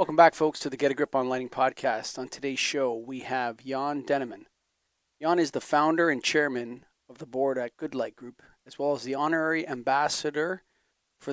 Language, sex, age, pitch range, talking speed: English, male, 40-59, 130-145 Hz, 200 wpm